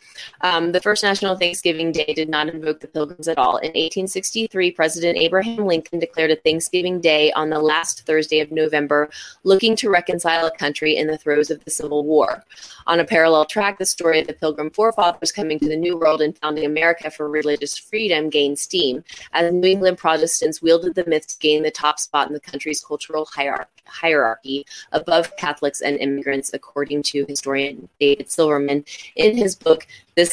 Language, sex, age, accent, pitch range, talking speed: English, female, 20-39, American, 150-180 Hz, 185 wpm